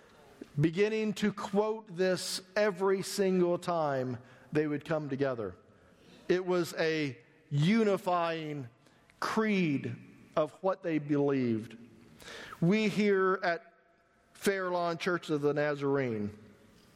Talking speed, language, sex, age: 100 wpm, English, male, 50-69